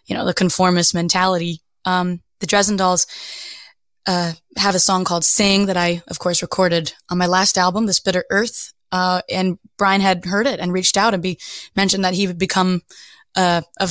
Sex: female